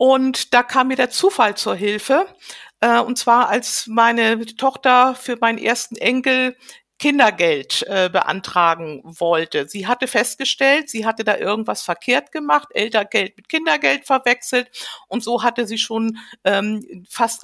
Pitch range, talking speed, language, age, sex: 200-250 Hz, 145 wpm, German, 50-69, female